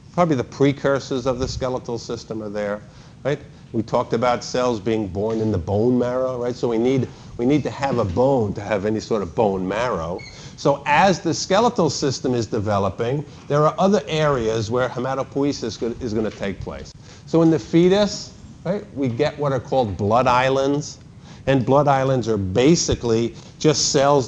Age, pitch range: 50-69, 115-145 Hz